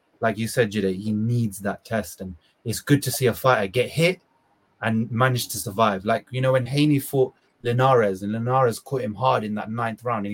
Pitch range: 100-130 Hz